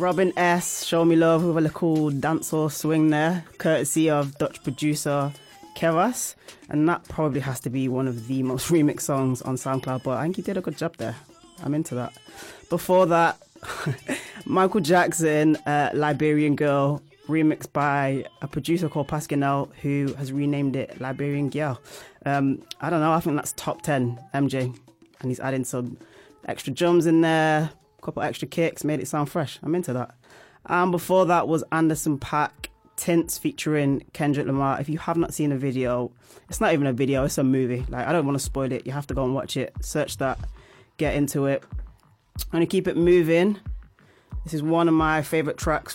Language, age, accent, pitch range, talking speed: English, 20-39, British, 135-165 Hz, 190 wpm